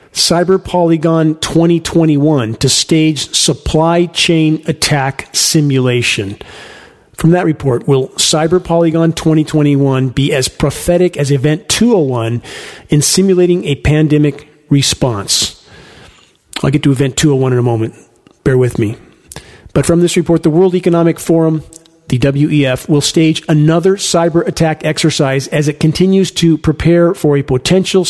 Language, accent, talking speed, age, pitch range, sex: English, American, 130 wpm, 40-59, 145-170 Hz, male